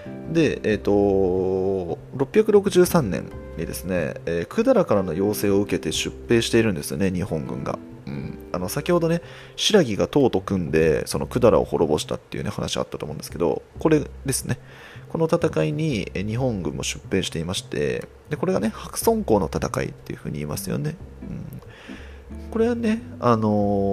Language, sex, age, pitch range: Japanese, male, 30-49, 85-130 Hz